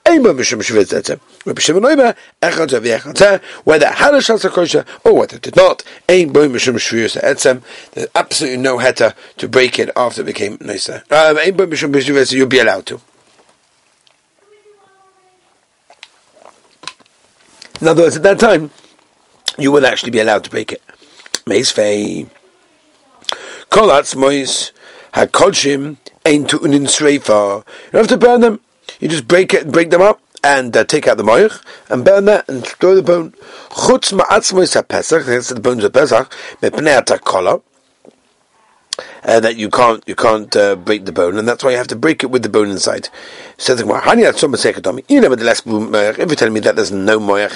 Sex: male